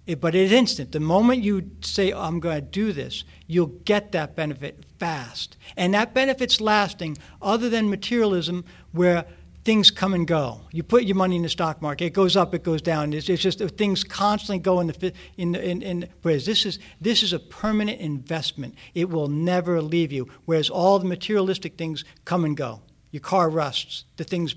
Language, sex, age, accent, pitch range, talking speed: English, male, 60-79, American, 150-195 Hz, 195 wpm